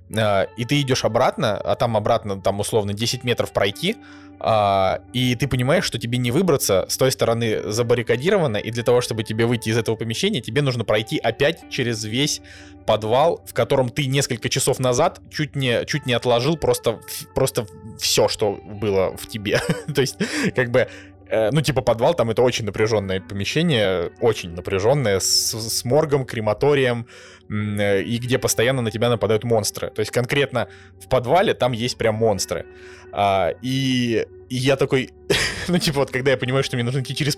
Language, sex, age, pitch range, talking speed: Russian, male, 20-39, 110-135 Hz, 170 wpm